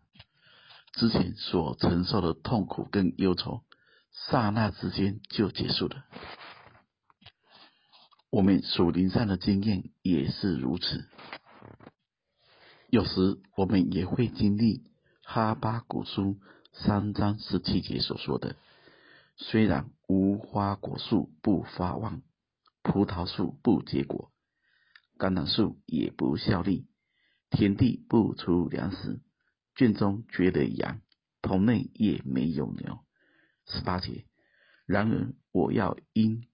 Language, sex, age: Chinese, male, 50-69